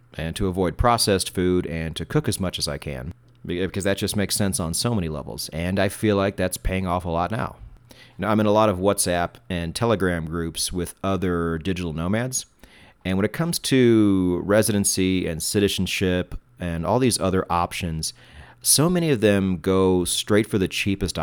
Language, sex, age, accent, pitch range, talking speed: English, male, 30-49, American, 85-110 Hz, 195 wpm